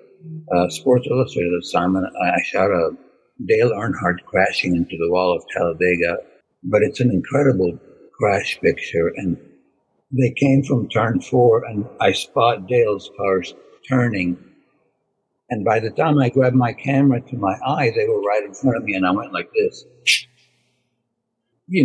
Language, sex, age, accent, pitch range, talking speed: English, male, 60-79, American, 120-165 Hz, 160 wpm